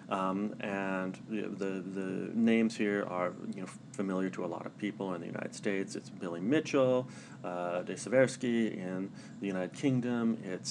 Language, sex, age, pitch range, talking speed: English, male, 40-59, 95-105 Hz, 170 wpm